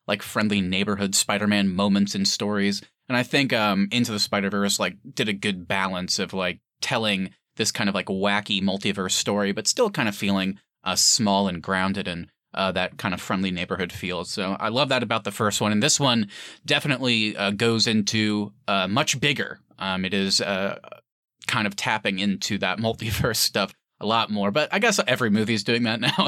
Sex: male